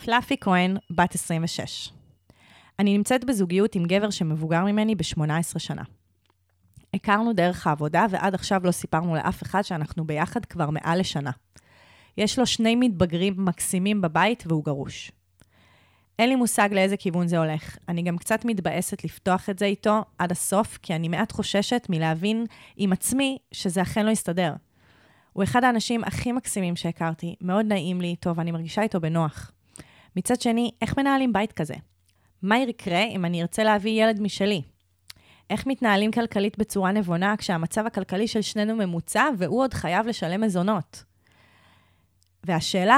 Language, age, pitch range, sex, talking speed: Hebrew, 20-39, 155-215 Hz, female, 150 wpm